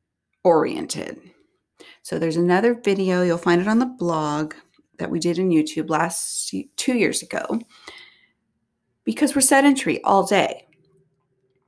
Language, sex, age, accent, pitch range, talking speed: English, female, 30-49, American, 155-235 Hz, 130 wpm